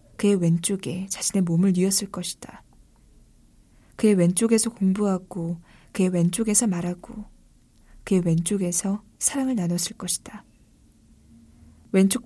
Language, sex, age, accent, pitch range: Korean, female, 20-39, native, 175-220 Hz